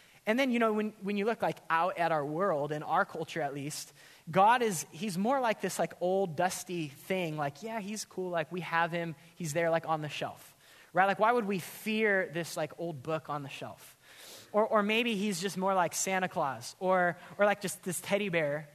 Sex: male